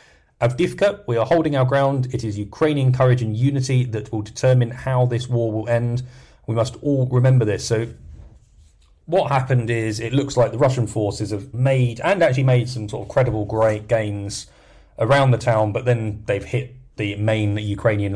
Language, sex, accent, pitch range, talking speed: English, male, British, 110-130 Hz, 185 wpm